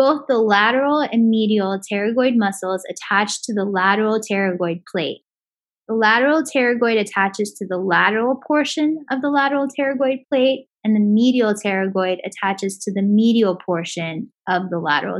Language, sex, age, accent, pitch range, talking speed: English, female, 10-29, American, 195-255 Hz, 150 wpm